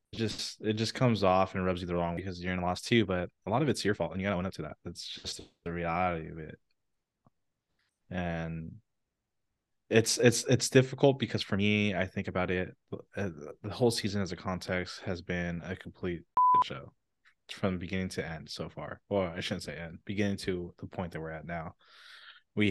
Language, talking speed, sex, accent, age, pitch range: English, 215 wpm, male, American, 20-39, 85-100 Hz